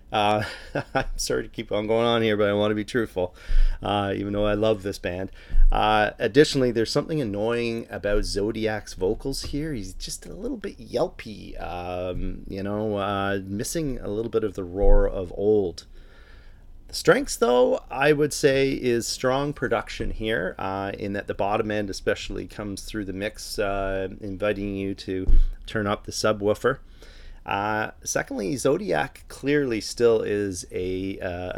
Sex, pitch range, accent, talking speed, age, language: male, 95-115 Hz, American, 165 wpm, 30-49, English